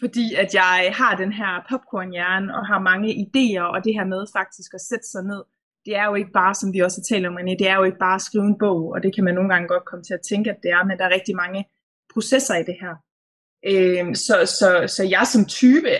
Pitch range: 185-235 Hz